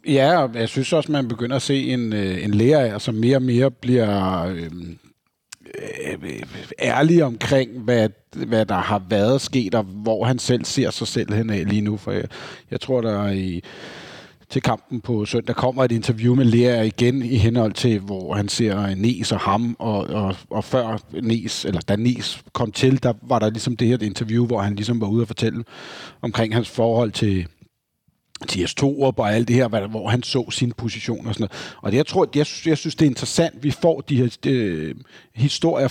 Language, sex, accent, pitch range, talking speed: Danish, male, native, 105-130 Hz, 200 wpm